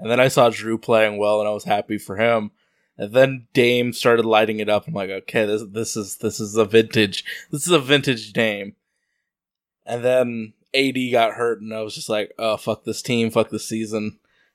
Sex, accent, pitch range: male, American, 115-145 Hz